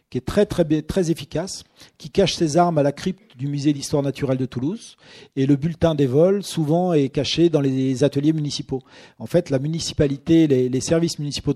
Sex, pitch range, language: male, 135-165 Hz, French